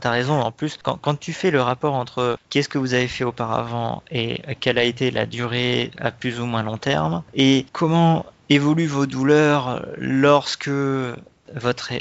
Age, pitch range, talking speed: 20-39, 120-140 Hz, 180 wpm